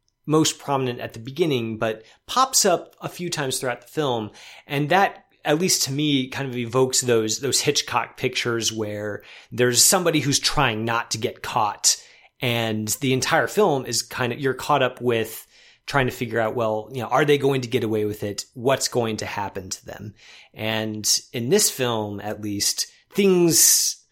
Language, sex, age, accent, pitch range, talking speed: English, male, 30-49, American, 115-145 Hz, 185 wpm